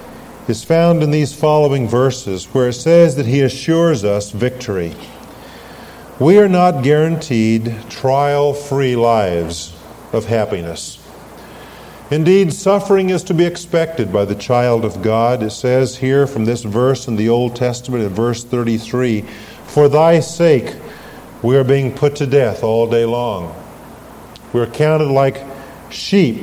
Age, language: 50-69, English